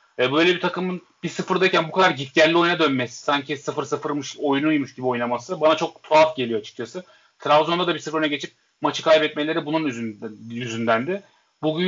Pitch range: 145-180 Hz